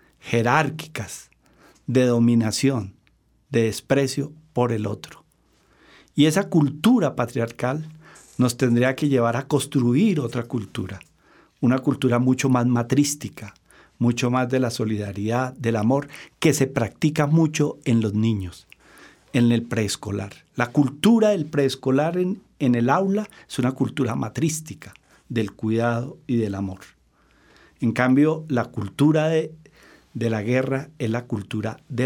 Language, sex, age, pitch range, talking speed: Spanish, male, 50-69, 115-145 Hz, 135 wpm